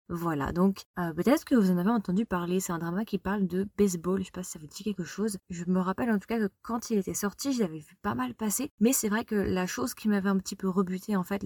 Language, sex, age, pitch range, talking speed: French, female, 20-39, 180-210 Hz, 295 wpm